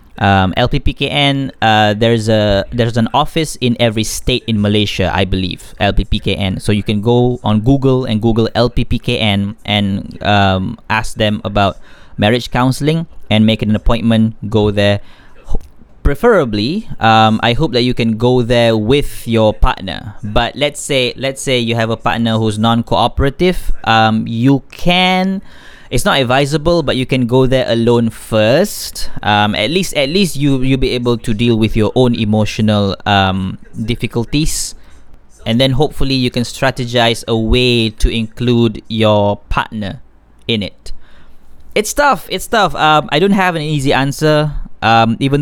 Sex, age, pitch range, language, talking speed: male, 20-39, 110-130 Hz, Malay, 155 wpm